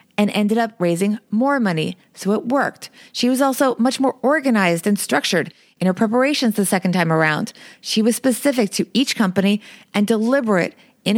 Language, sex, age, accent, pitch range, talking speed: English, female, 30-49, American, 200-250 Hz, 175 wpm